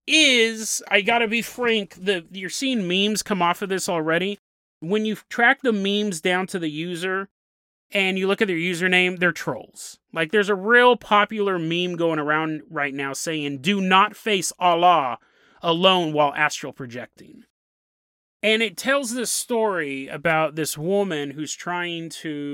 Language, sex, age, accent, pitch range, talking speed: English, male, 30-49, American, 160-210 Hz, 160 wpm